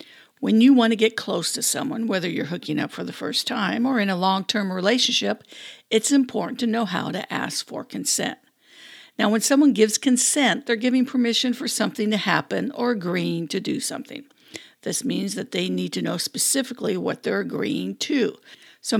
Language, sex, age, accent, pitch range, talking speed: English, female, 60-79, American, 210-270 Hz, 190 wpm